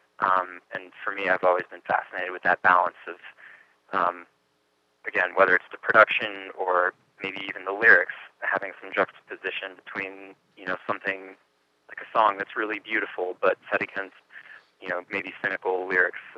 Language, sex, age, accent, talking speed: English, male, 20-39, American, 160 wpm